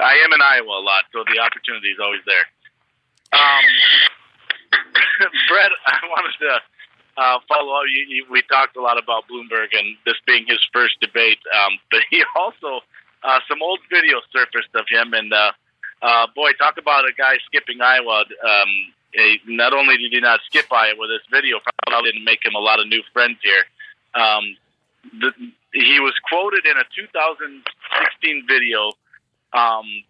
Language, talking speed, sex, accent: English, 175 wpm, male, American